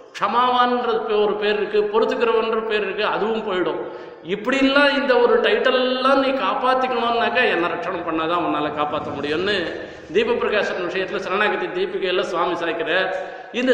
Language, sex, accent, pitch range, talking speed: Tamil, male, native, 175-265 Hz, 135 wpm